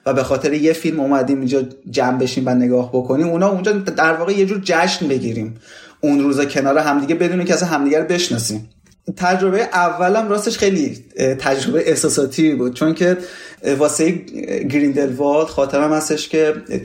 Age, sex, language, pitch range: 30-49, male, Persian, 130-165 Hz